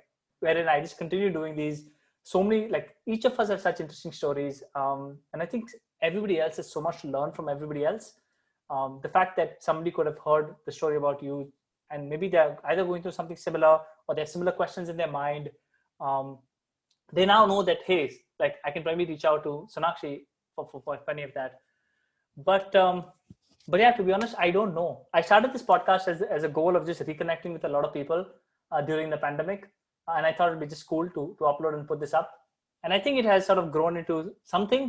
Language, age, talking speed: English, 20-39, 230 wpm